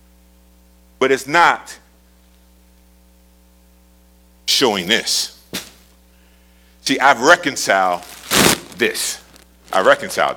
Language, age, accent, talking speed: English, 50-69, American, 65 wpm